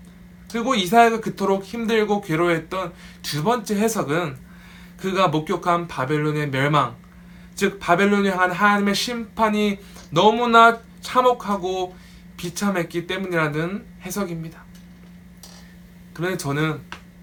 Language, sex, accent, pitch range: Korean, male, native, 175-205 Hz